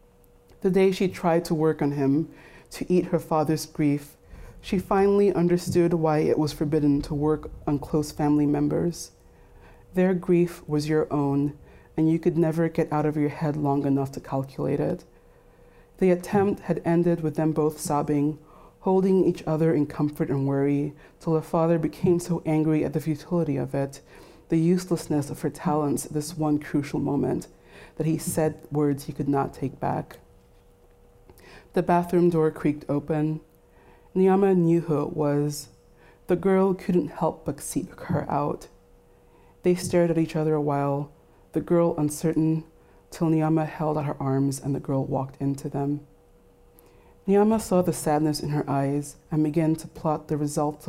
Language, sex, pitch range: English, female, 145-170 Hz